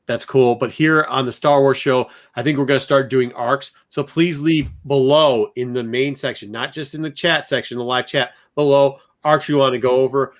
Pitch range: 125-150 Hz